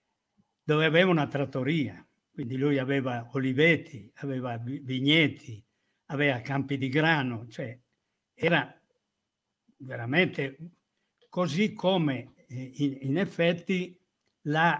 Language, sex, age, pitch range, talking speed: Italian, male, 60-79, 125-145 Hz, 90 wpm